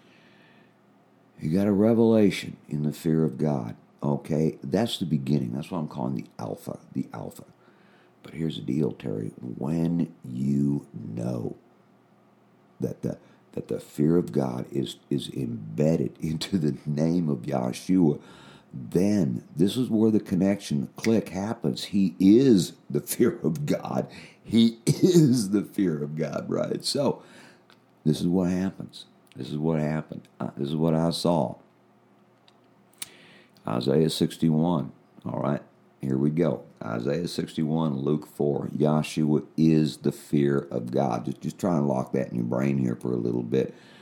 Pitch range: 70-85 Hz